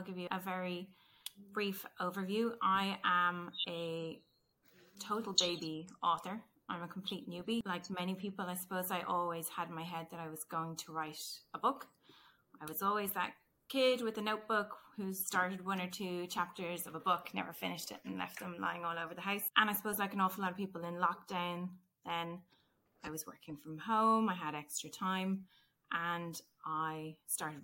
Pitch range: 165-200 Hz